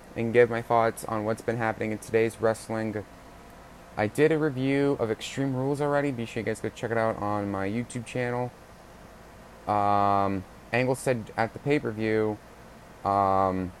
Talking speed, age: 165 wpm, 20-39